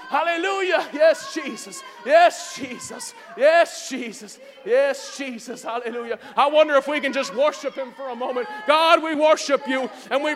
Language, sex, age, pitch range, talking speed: English, male, 30-49, 185-310 Hz, 155 wpm